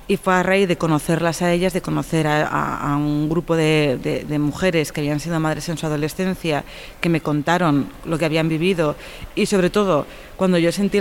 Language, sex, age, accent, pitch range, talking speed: Spanish, female, 30-49, Spanish, 155-185 Hz, 215 wpm